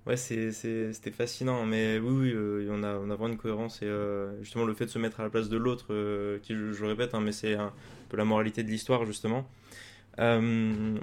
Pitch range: 105-125 Hz